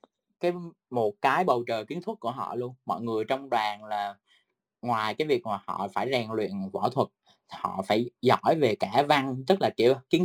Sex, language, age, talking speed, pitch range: male, Vietnamese, 20-39, 205 wpm, 115-170 Hz